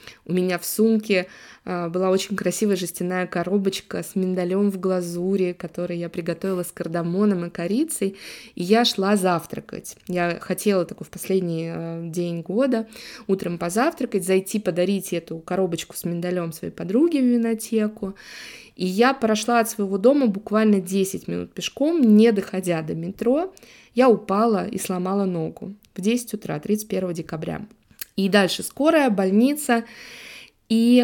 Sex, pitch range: female, 180-230 Hz